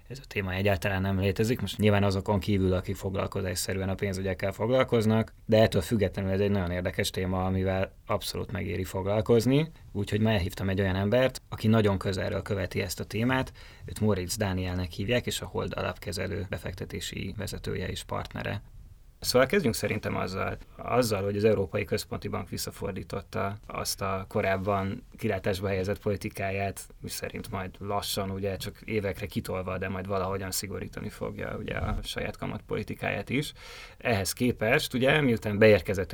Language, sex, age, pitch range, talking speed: Hungarian, male, 20-39, 95-105 Hz, 155 wpm